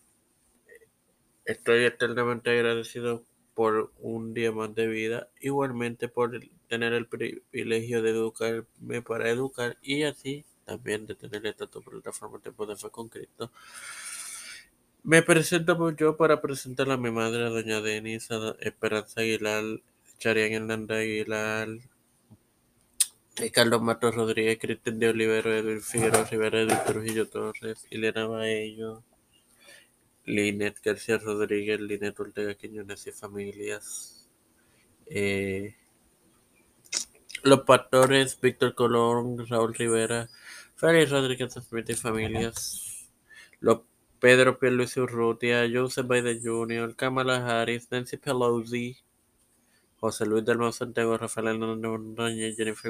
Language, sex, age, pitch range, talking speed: Spanish, male, 20-39, 110-125 Hz, 125 wpm